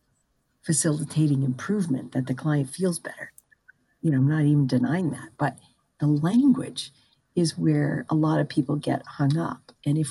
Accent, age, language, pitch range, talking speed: American, 50-69, English, 140-170 Hz, 165 wpm